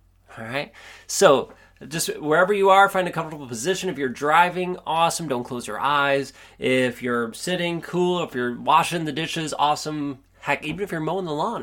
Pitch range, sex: 95-155 Hz, male